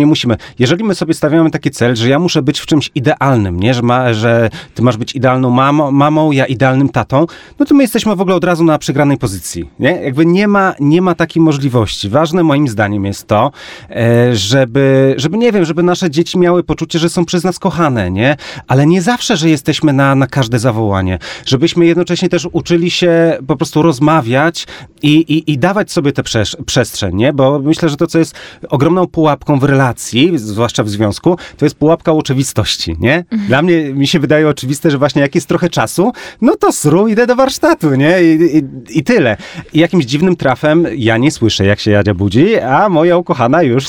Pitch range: 130-170 Hz